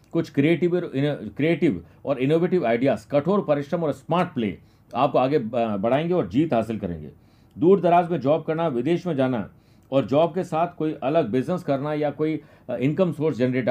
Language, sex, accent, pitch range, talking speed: Hindi, male, native, 120-165 Hz, 175 wpm